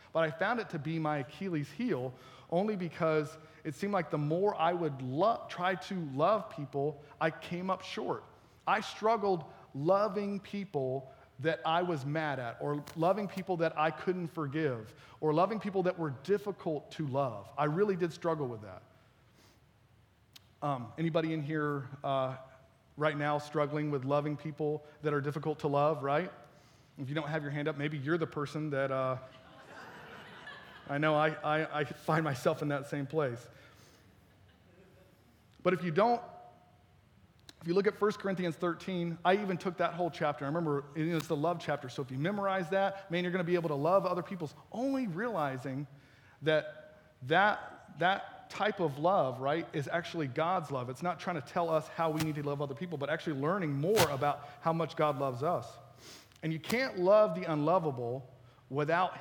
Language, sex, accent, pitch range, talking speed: English, male, American, 140-175 Hz, 180 wpm